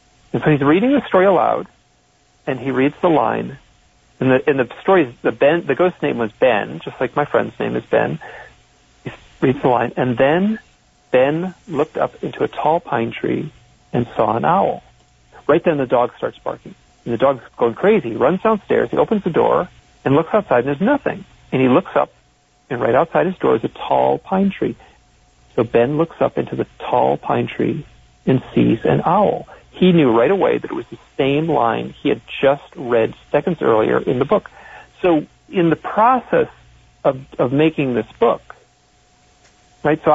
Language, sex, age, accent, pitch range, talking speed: English, male, 40-59, American, 115-175 Hz, 195 wpm